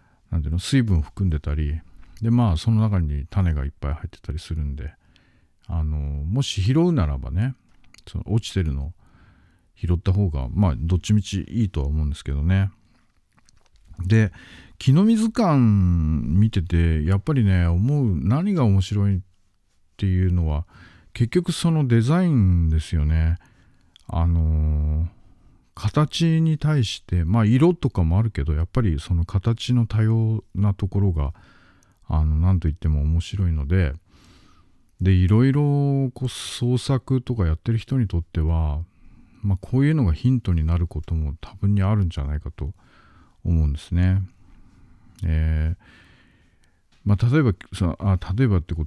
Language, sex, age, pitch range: Japanese, male, 50-69, 80-115 Hz